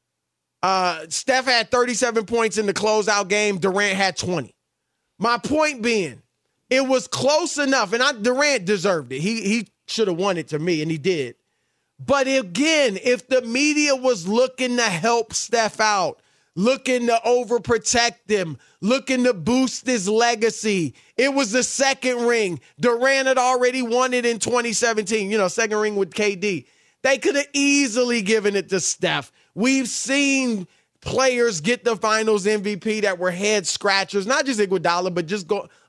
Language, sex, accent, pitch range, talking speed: English, male, American, 200-260 Hz, 155 wpm